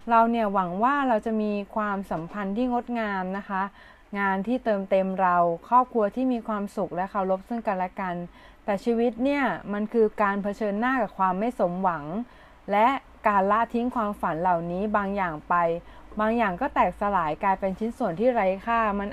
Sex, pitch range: female, 190-235 Hz